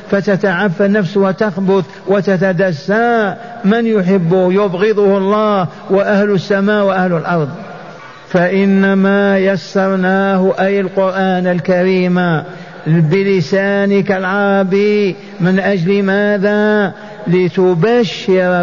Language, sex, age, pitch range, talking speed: Arabic, male, 50-69, 175-200 Hz, 75 wpm